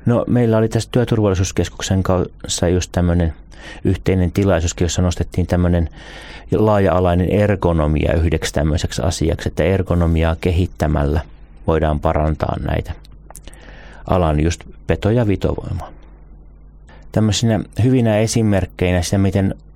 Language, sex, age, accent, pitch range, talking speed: Finnish, male, 30-49, native, 80-95 Hz, 100 wpm